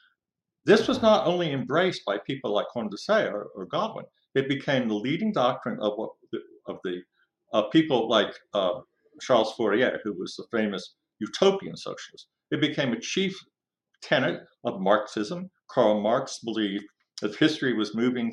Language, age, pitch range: English, 50-69, 120-175 Hz